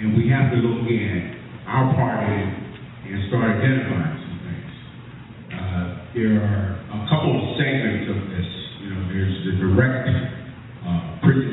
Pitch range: 110-140 Hz